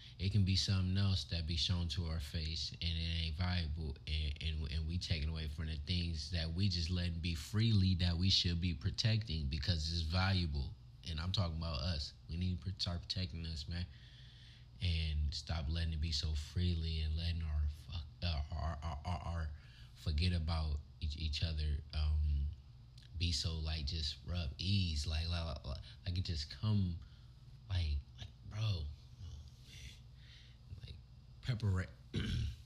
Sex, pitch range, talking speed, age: male, 80-115 Hz, 165 wpm, 20-39